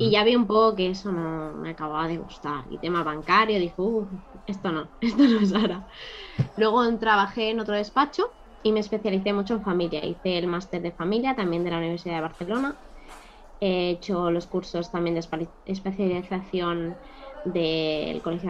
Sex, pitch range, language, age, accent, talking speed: female, 175-225 Hz, Spanish, 20-39, Spanish, 170 wpm